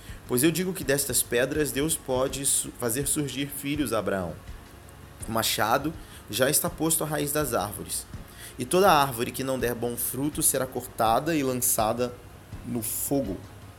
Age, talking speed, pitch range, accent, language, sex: 20-39, 155 wpm, 100-135 Hz, Brazilian, Portuguese, male